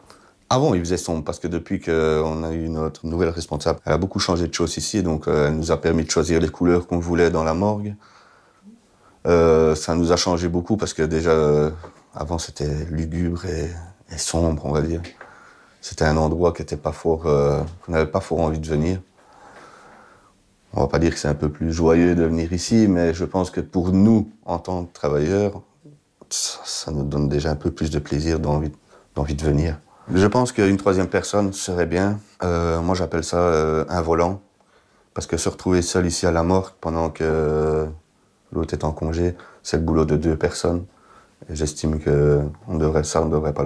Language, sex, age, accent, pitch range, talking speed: French, male, 30-49, French, 75-90 Hz, 215 wpm